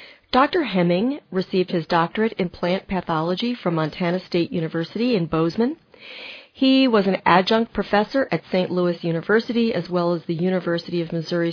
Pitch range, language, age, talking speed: 175-220 Hz, English, 40-59, 155 wpm